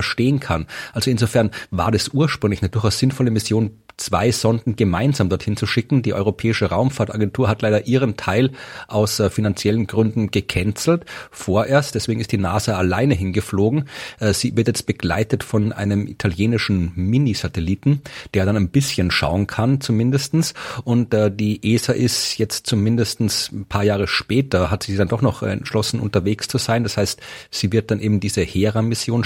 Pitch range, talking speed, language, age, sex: 100-115 Hz, 160 wpm, German, 40-59, male